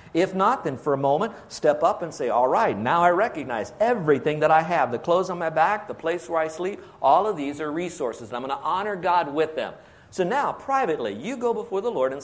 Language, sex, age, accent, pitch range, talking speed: English, male, 50-69, American, 140-195 Hz, 250 wpm